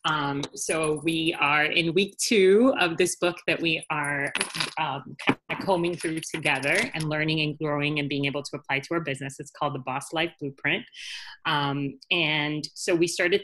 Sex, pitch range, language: female, 140-165 Hz, English